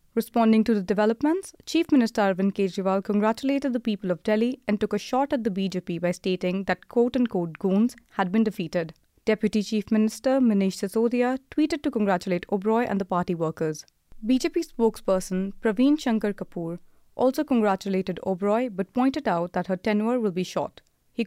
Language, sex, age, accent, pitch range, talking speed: English, female, 30-49, Indian, 185-245 Hz, 165 wpm